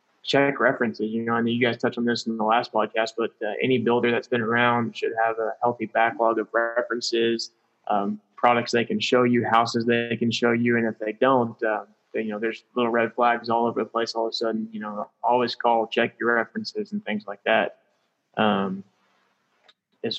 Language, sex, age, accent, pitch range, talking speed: English, male, 20-39, American, 110-120 Hz, 215 wpm